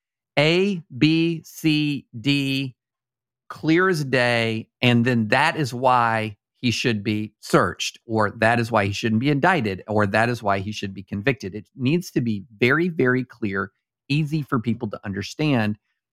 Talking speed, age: 165 wpm, 50-69